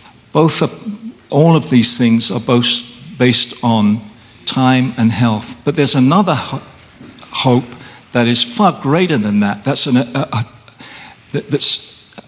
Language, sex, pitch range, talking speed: English, male, 115-140 Hz, 150 wpm